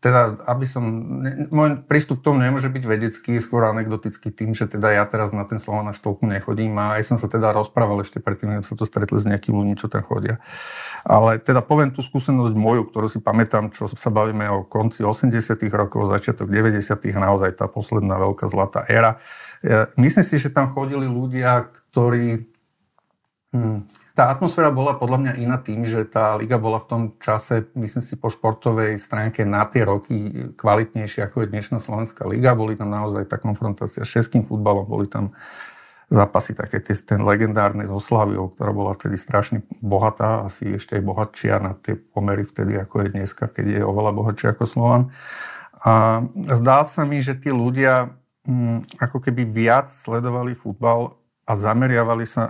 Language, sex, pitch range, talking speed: Slovak, male, 105-125 Hz, 175 wpm